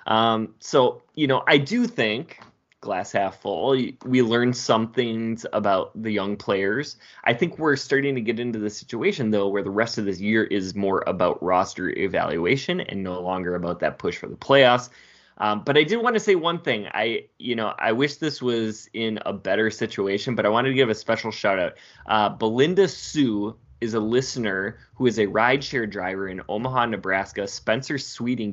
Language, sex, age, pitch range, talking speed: English, male, 20-39, 100-130 Hz, 195 wpm